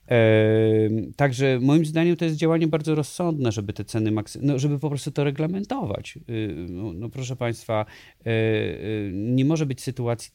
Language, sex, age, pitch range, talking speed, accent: Polish, male, 30-49, 105-125 Hz, 145 wpm, native